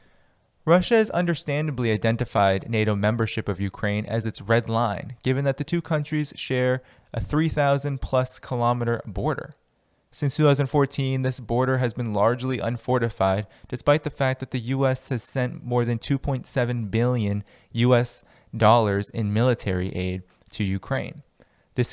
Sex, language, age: male, English, 20-39